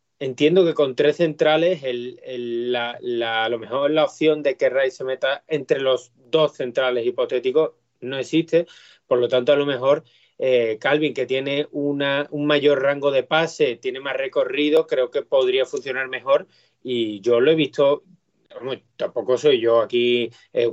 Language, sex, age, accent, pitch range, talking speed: Spanish, male, 30-49, Spanish, 125-180 Hz, 175 wpm